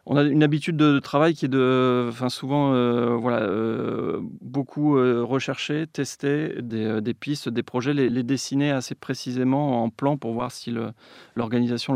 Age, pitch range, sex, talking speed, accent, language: 30-49, 115-135 Hz, male, 170 wpm, French, French